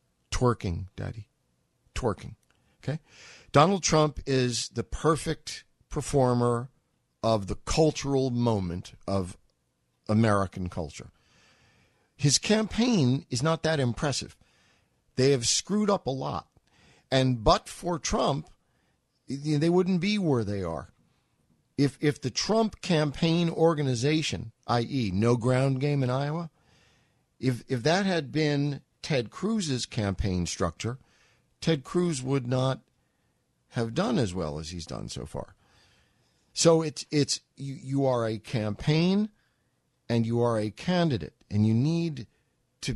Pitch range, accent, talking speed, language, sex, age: 110-150 Hz, American, 125 wpm, English, male, 50-69